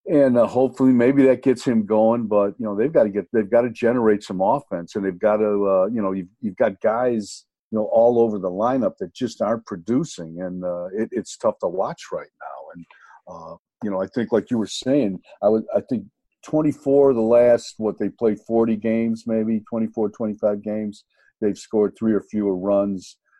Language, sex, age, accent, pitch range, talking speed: English, male, 50-69, American, 100-125 Hz, 215 wpm